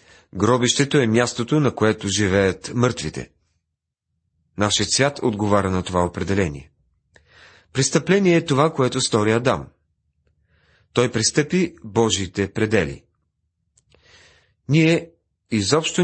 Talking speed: 95 wpm